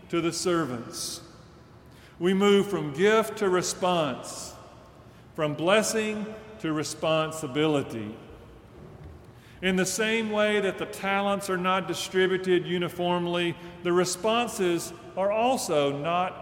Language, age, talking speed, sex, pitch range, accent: English, 40-59, 105 wpm, male, 145-185 Hz, American